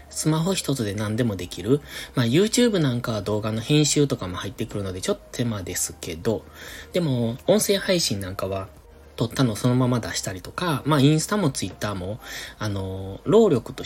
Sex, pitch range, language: male, 105-145 Hz, Japanese